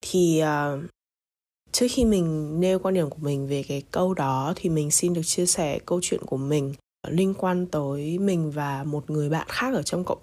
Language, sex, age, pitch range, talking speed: Vietnamese, female, 20-39, 150-190 Hz, 210 wpm